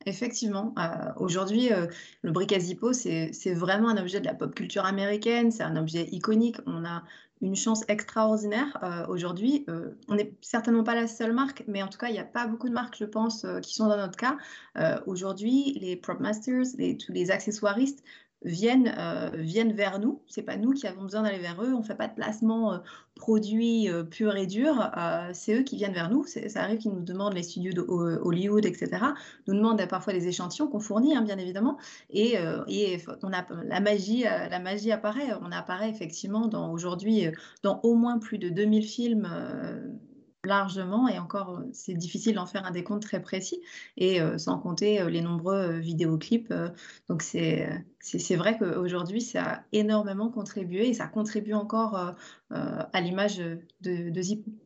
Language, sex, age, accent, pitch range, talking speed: French, female, 30-49, French, 185-230 Hz, 205 wpm